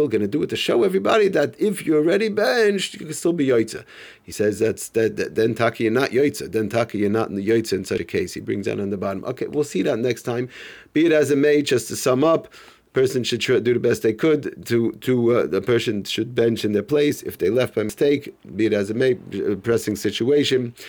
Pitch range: 105-130 Hz